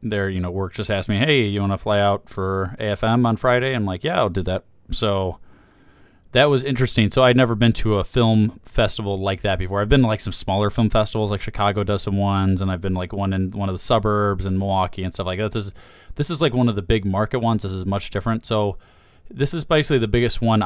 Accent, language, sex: American, English, male